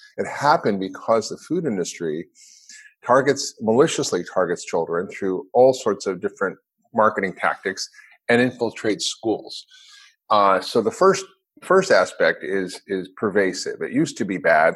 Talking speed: 140 wpm